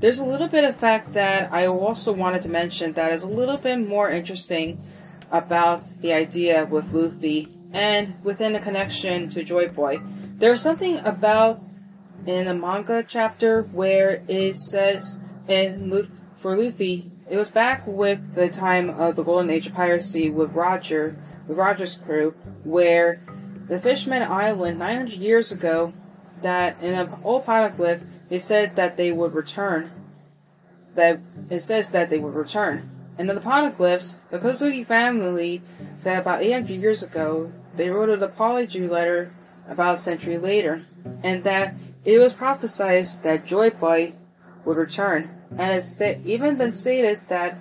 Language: English